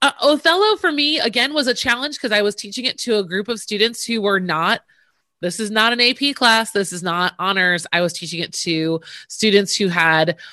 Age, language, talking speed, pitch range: 30-49, English, 220 wpm, 170-225 Hz